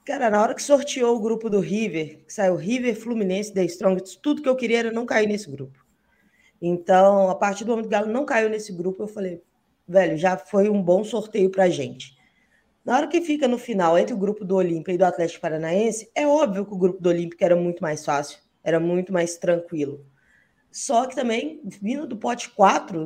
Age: 20-39